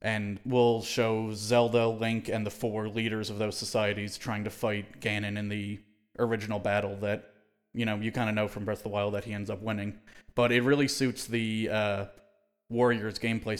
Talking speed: 200 wpm